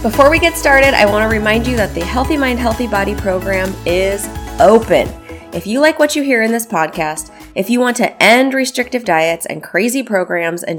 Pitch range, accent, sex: 175-245 Hz, American, female